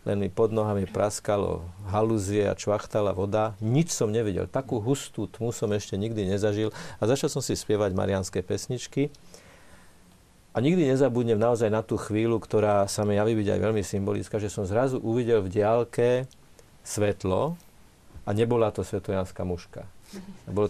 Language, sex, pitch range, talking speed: Slovak, male, 95-115 Hz, 155 wpm